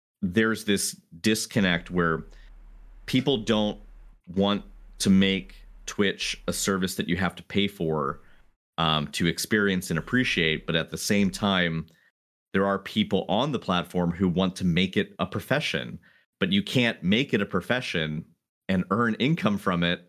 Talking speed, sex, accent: 160 wpm, male, American